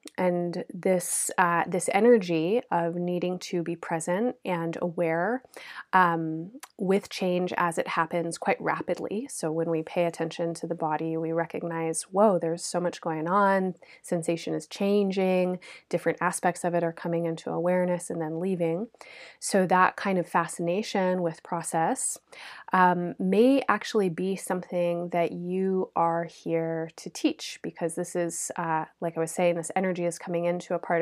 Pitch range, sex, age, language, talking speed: 170-195 Hz, female, 30-49, English, 160 wpm